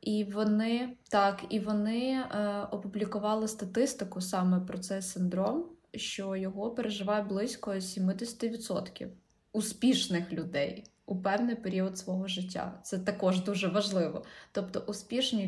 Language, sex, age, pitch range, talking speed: Ukrainian, female, 20-39, 190-220 Hz, 110 wpm